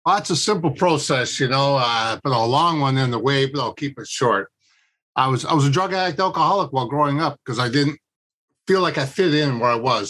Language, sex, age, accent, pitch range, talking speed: English, male, 50-69, American, 130-155 Hz, 250 wpm